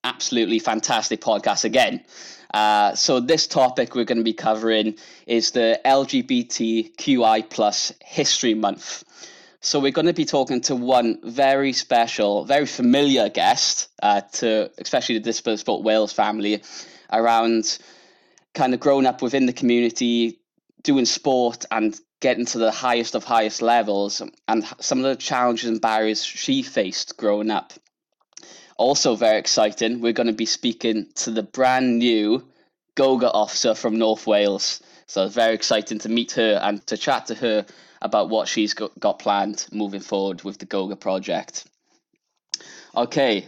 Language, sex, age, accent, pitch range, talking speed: English, male, 10-29, British, 110-130 Hz, 150 wpm